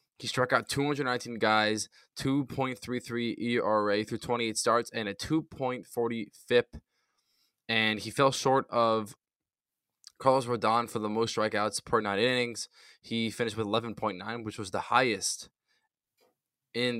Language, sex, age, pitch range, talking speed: English, male, 10-29, 105-120 Hz, 130 wpm